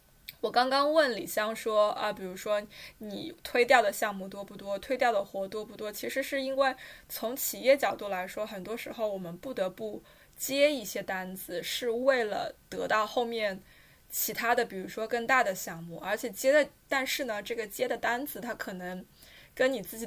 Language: Chinese